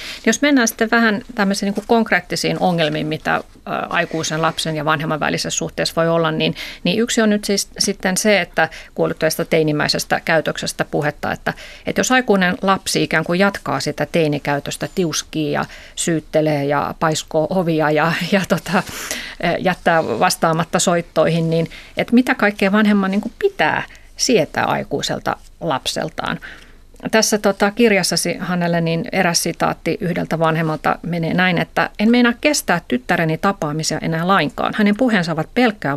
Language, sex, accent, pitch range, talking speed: Finnish, female, native, 165-215 Hz, 140 wpm